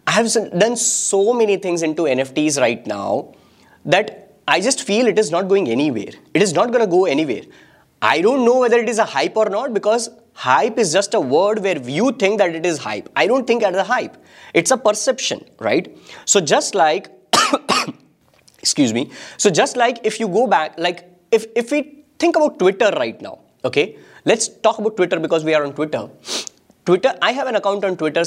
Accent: Indian